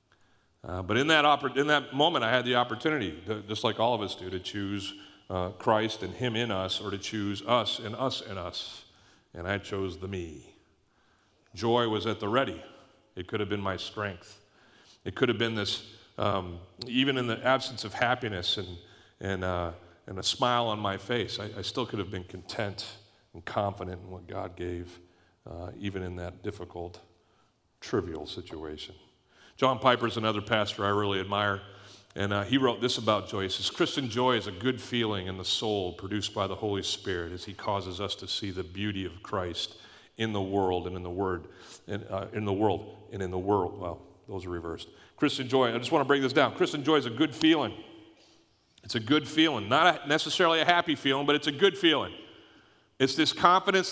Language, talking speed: English, 205 wpm